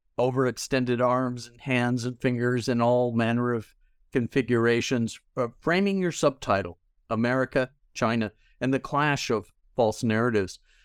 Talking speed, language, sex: 125 wpm, English, male